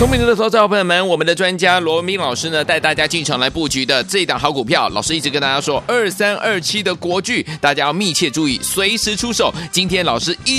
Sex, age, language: male, 30-49, Chinese